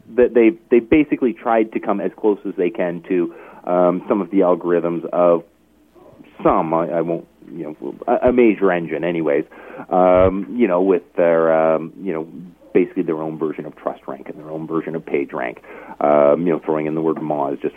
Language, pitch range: English, 85-115 Hz